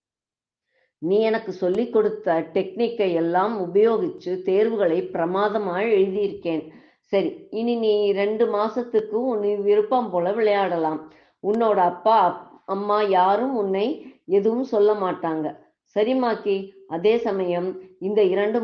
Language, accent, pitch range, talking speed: Tamil, native, 190-225 Hz, 95 wpm